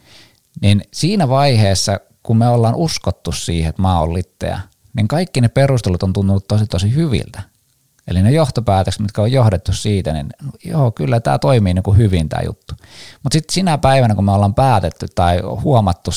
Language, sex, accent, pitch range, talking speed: Finnish, male, native, 90-120 Hz, 180 wpm